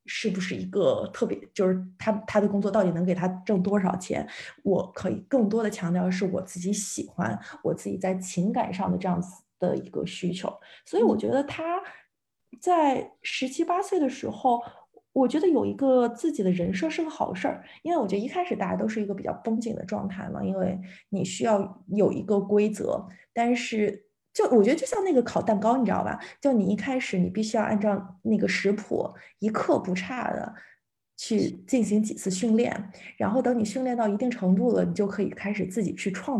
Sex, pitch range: female, 190-245 Hz